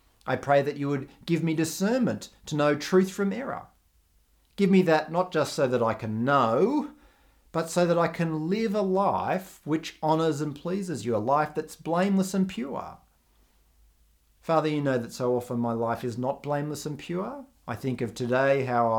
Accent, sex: Australian, male